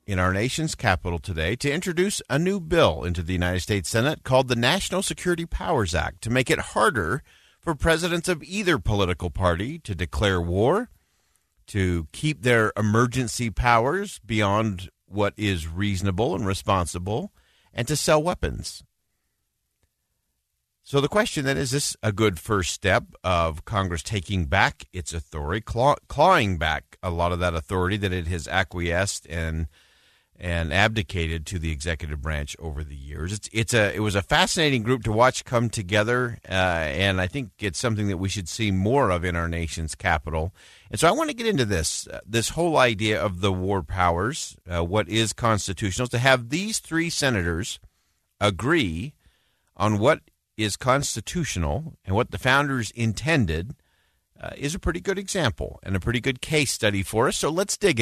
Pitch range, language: 90-130 Hz, English